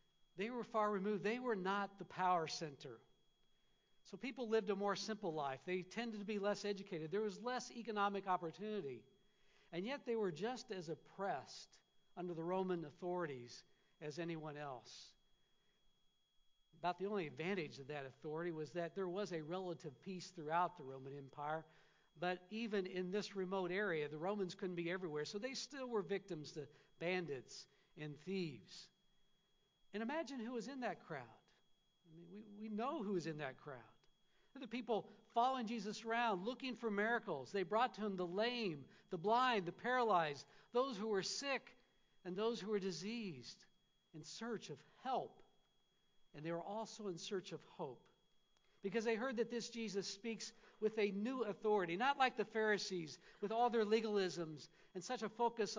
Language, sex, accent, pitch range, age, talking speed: English, male, American, 175-220 Hz, 60-79, 170 wpm